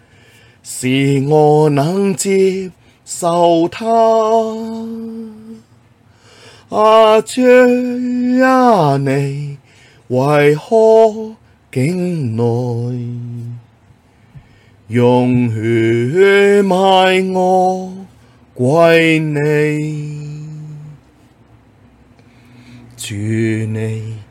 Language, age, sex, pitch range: Chinese, 30-49, male, 120-170 Hz